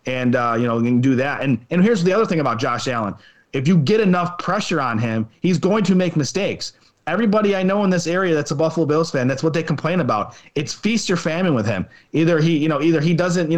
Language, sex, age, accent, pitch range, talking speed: English, male, 30-49, American, 130-170 Hz, 260 wpm